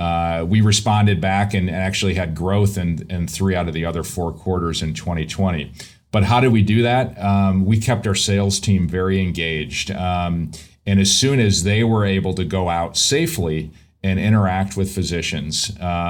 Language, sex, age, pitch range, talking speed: English, male, 40-59, 90-100 Hz, 185 wpm